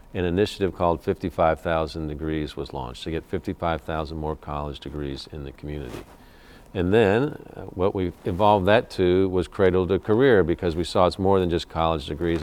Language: English